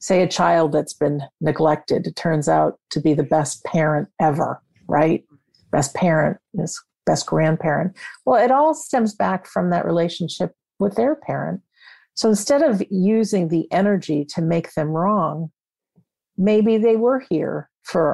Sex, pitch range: female, 160-225 Hz